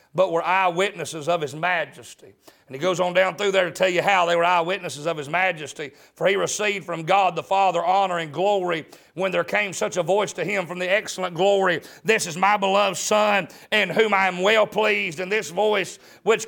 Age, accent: 40-59, American